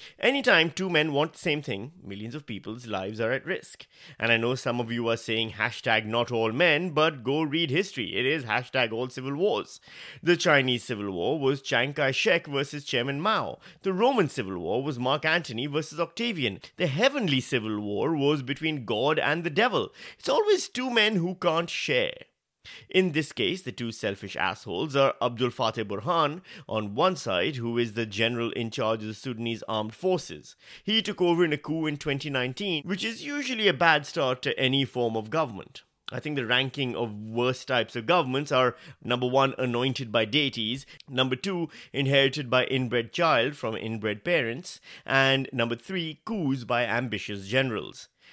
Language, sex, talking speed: English, male, 180 wpm